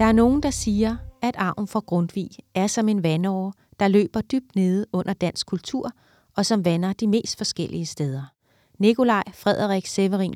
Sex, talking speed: female, 175 wpm